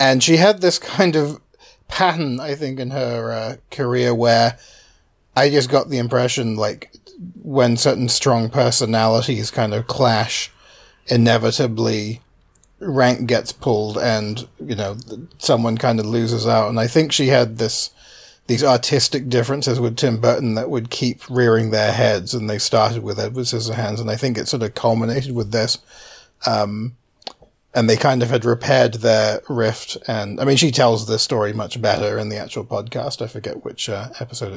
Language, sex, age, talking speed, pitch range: English, male, 40-59, 170 wpm, 115-135 Hz